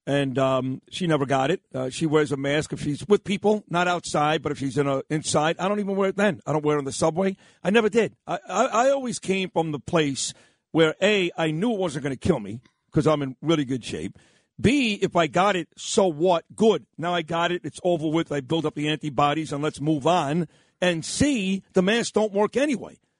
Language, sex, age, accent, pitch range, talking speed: English, male, 50-69, American, 155-200 Hz, 245 wpm